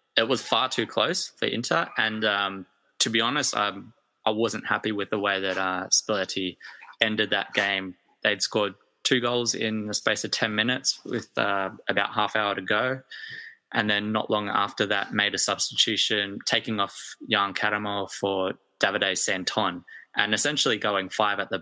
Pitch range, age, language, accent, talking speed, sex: 100-115 Hz, 20-39, English, Australian, 180 wpm, male